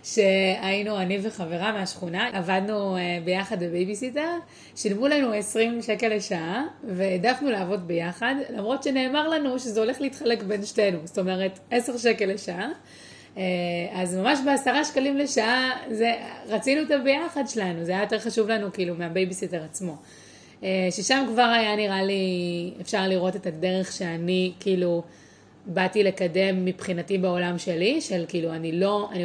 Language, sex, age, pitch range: Hebrew, female, 30-49, 180-220 Hz